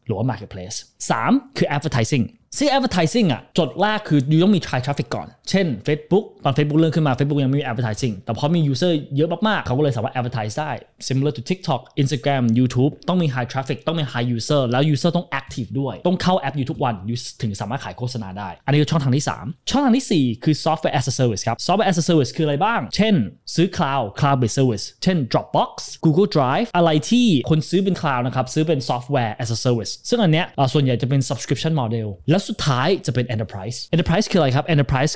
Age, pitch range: 20-39, 125-160 Hz